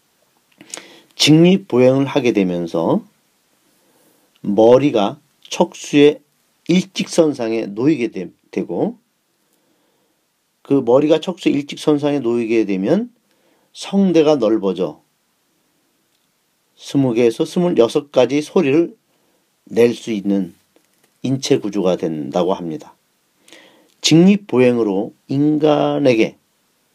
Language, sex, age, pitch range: Korean, male, 40-59, 120-170 Hz